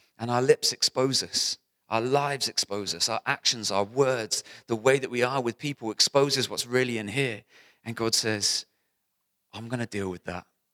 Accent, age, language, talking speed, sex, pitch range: British, 30-49, English, 190 wpm, male, 95-120 Hz